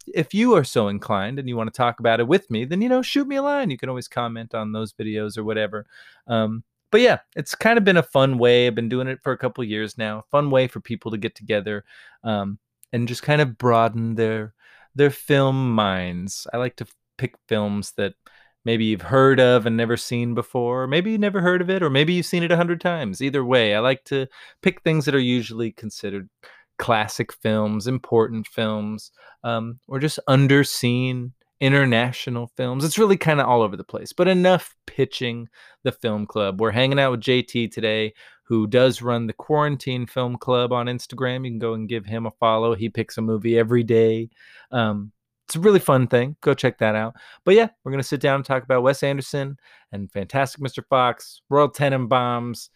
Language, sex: English, male